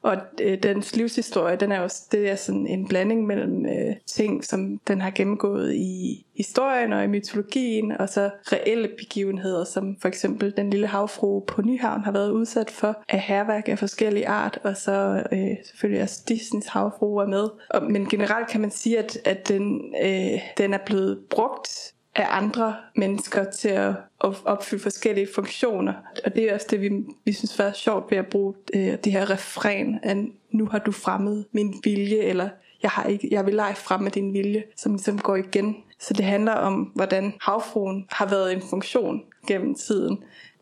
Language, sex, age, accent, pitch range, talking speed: Danish, female, 20-39, native, 200-220 Hz, 190 wpm